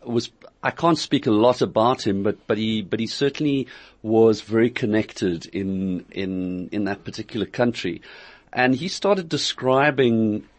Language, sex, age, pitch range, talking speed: English, male, 50-69, 100-130 Hz, 155 wpm